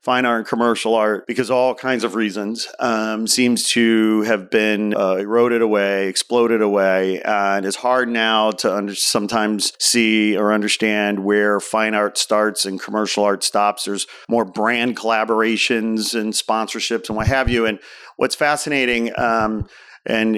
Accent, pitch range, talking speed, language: American, 105-120 Hz, 155 wpm, English